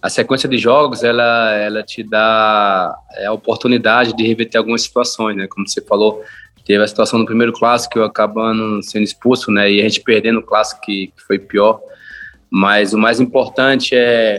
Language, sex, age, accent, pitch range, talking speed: Portuguese, male, 20-39, Brazilian, 105-115 Hz, 175 wpm